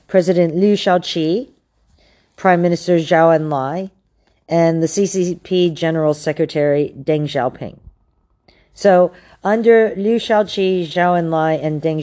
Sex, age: female, 40-59